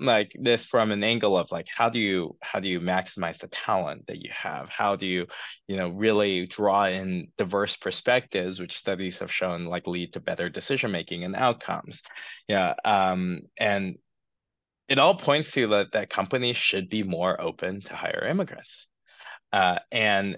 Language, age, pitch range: English, 20-39, 95-115 Hz